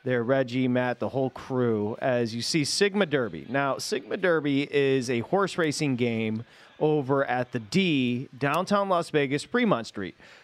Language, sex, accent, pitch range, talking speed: English, male, American, 130-195 Hz, 160 wpm